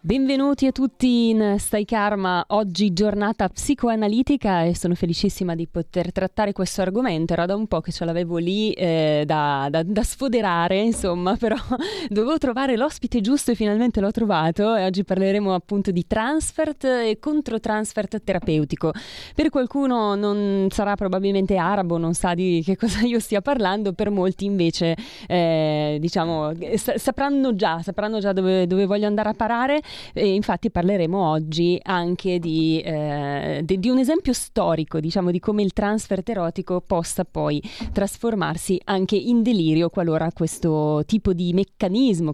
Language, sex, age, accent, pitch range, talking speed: Italian, female, 30-49, native, 170-220 Hz, 150 wpm